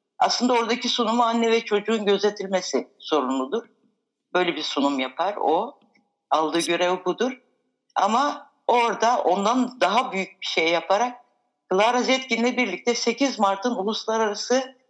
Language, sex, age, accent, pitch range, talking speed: Turkish, female, 60-79, native, 165-235 Hz, 120 wpm